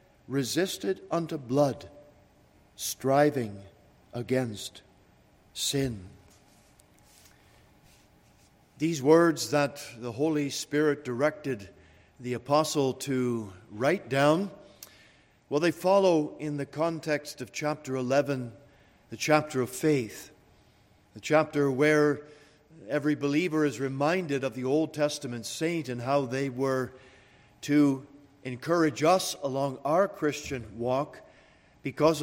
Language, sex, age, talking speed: English, male, 50-69, 100 wpm